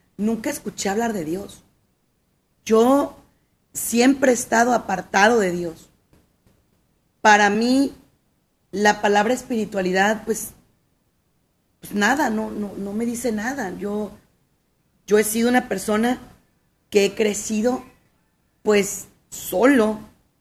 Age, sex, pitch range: 40-59, female, 200-240 Hz